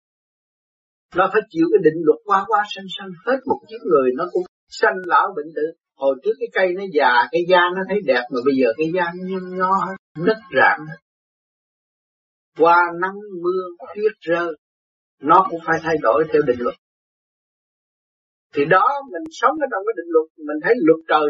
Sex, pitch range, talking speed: male, 160-270 Hz, 185 wpm